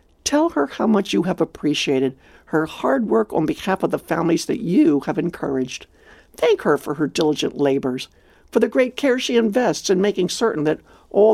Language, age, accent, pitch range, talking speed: English, 60-79, American, 150-230 Hz, 190 wpm